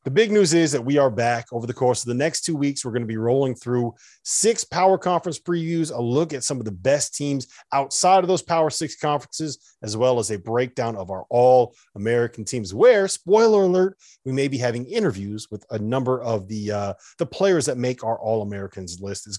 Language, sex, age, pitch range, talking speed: English, male, 30-49, 115-160 Hz, 220 wpm